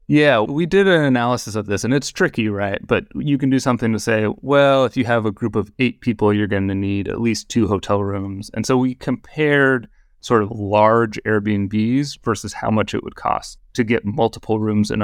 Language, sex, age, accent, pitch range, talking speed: English, male, 30-49, American, 105-135 Hz, 220 wpm